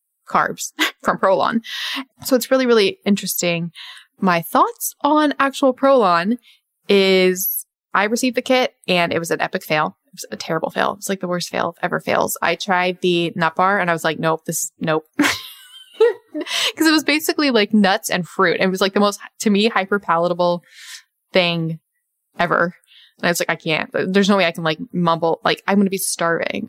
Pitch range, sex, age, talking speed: 170-230 Hz, female, 20-39, 195 wpm